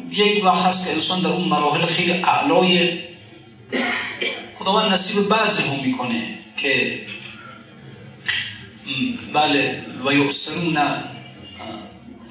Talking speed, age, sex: 95 wpm, 30-49, male